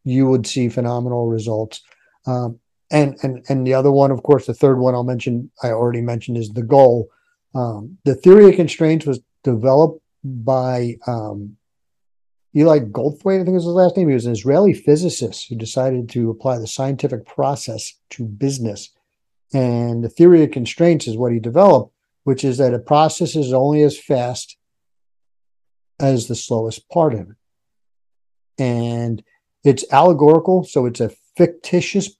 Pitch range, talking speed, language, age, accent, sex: 120-150 Hz, 160 wpm, English, 50-69, American, male